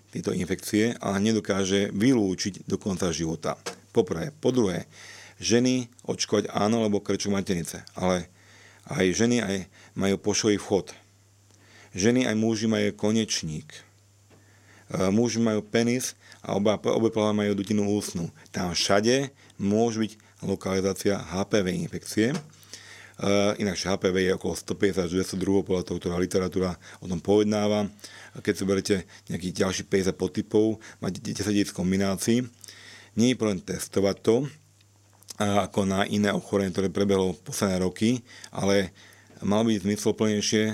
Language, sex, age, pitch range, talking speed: Slovak, male, 40-59, 95-110 Hz, 130 wpm